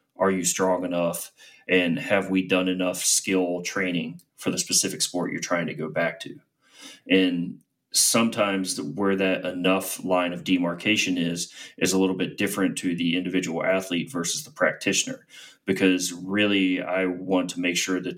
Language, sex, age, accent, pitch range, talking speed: English, male, 30-49, American, 90-95 Hz, 165 wpm